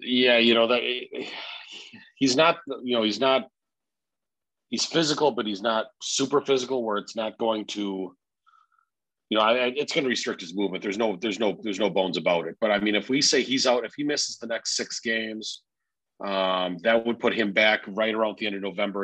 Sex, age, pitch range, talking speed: male, 40-59, 95-115 Hz, 210 wpm